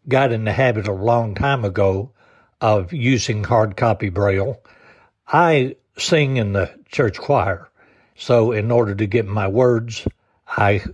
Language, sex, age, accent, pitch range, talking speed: English, male, 60-79, American, 105-125 Hz, 150 wpm